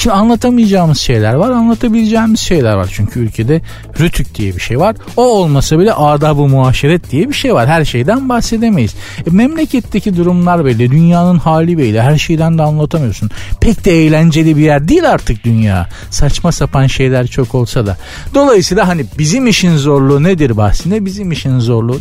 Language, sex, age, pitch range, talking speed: Turkish, male, 50-69, 120-180 Hz, 170 wpm